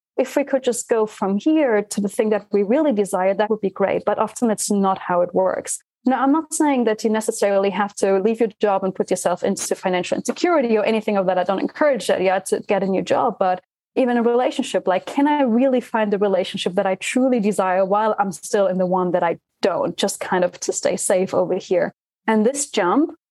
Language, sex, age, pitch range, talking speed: English, female, 20-39, 195-245 Hz, 240 wpm